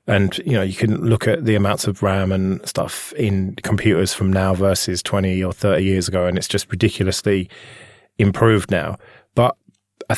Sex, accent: male, British